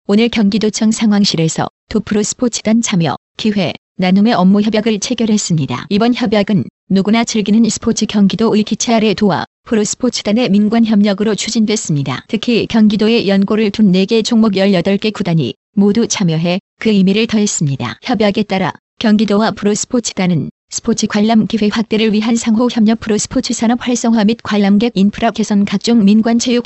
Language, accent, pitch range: Korean, native, 200-225 Hz